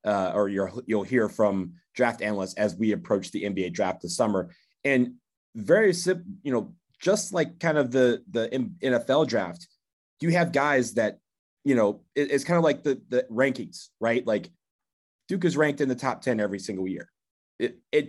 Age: 30-49